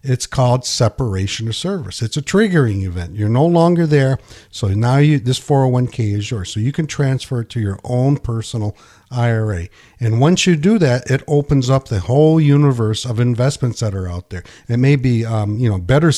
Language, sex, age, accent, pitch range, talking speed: English, male, 50-69, American, 115-140 Hz, 200 wpm